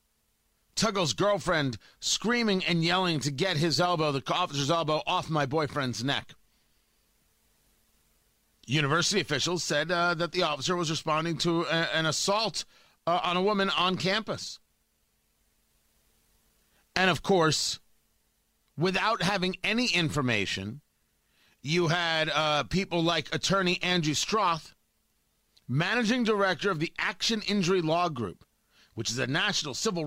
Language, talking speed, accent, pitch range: English, 125 wpm, American, 150-200 Hz